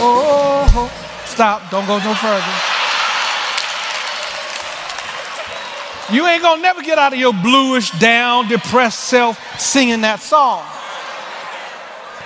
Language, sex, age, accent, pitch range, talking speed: English, male, 40-59, American, 220-295 Hz, 105 wpm